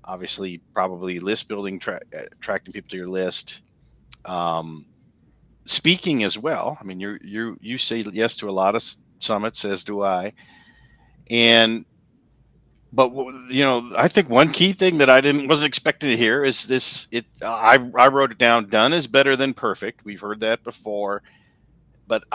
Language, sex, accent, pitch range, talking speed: English, male, American, 110-145 Hz, 170 wpm